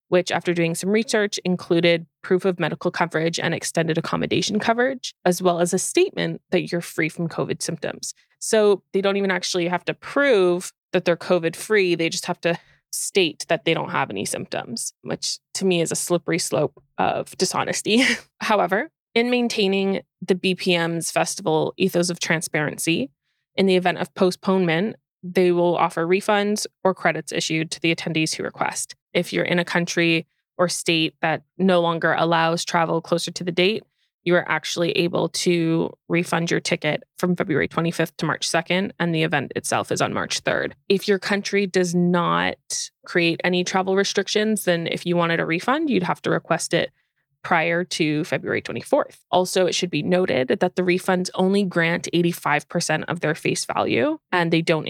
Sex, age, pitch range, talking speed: female, 20-39, 165-185 Hz, 180 wpm